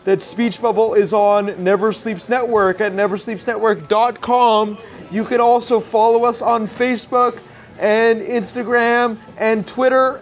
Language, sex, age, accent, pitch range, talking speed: English, male, 30-49, American, 205-240 Hz, 125 wpm